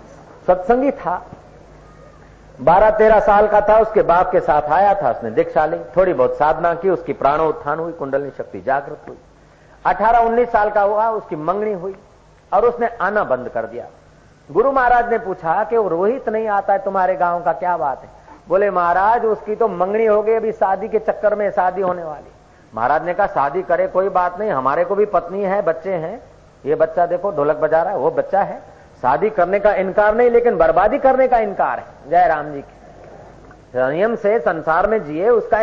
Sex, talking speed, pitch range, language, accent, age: male, 135 wpm, 170-220 Hz, Hindi, native, 50-69